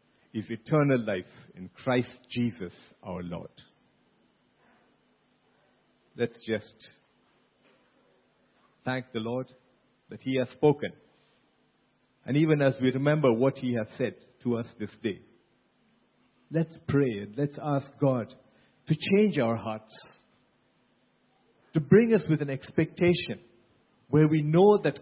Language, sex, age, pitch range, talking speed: English, male, 50-69, 125-170 Hz, 120 wpm